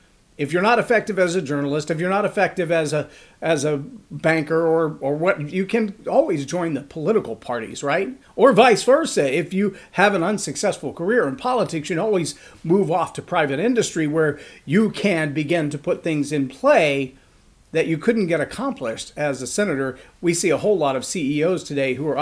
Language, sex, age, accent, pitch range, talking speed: English, male, 40-59, American, 150-210 Hz, 195 wpm